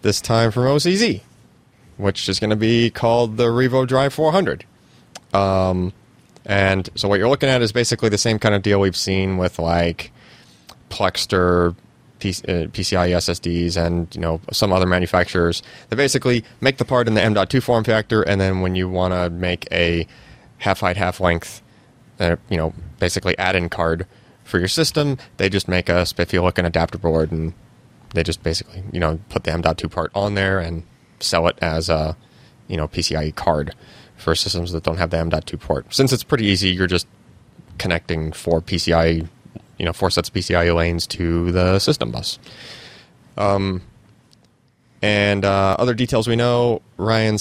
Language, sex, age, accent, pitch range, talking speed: English, male, 30-49, American, 85-115 Hz, 175 wpm